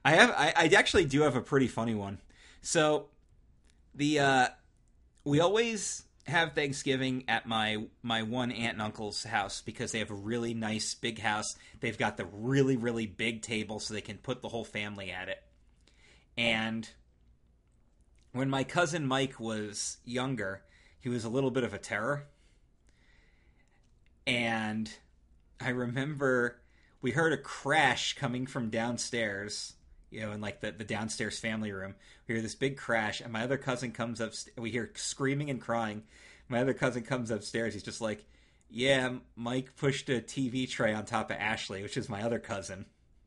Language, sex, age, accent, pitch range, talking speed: English, male, 30-49, American, 105-135 Hz, 170 wpm